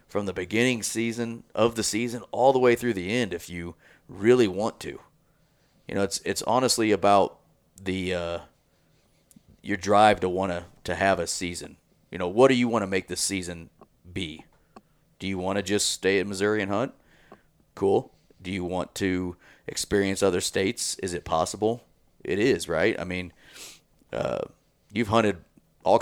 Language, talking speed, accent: English, 175 wpm, American